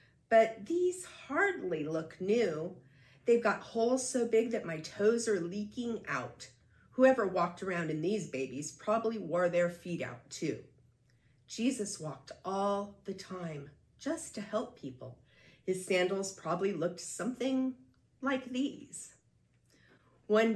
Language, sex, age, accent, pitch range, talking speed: English, female, 40-59, American, 145-220 Hz, 130 wpm